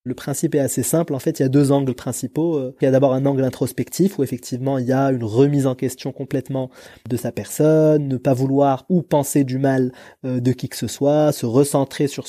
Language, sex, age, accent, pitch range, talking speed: French, male, 20-39, French, 125-150 Hz, 235 wpm